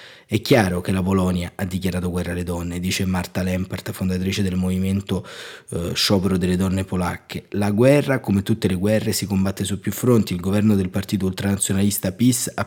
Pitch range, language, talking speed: 95-110 Hz, Italian, 185 wpm